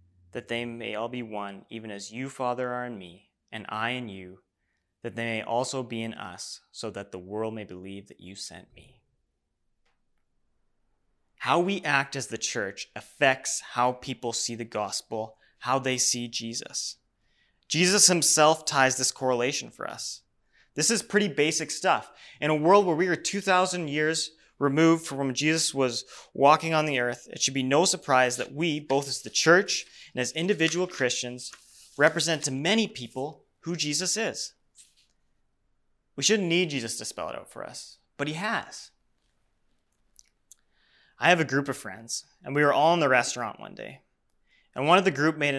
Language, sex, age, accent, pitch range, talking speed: English, male, 20-39, American, 120-160 Hz, 180 wpm